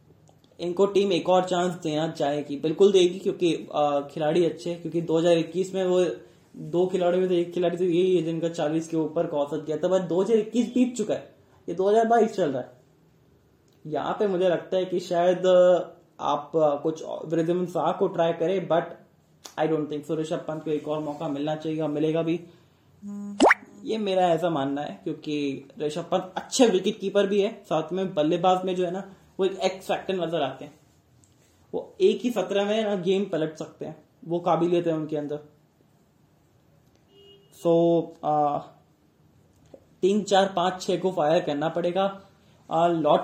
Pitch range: 160-185 Hz